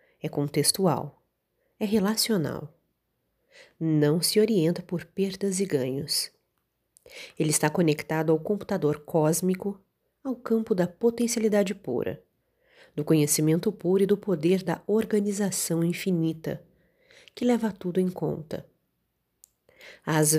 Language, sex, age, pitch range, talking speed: Portuguese, female, 30-49, 160-215 Hz, 110 wpm